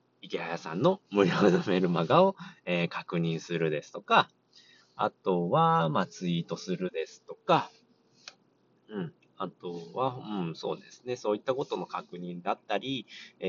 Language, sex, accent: Japanese, male, native